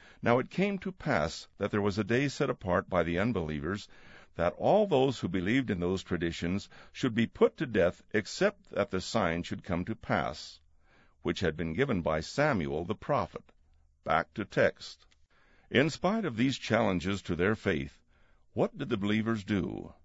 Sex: male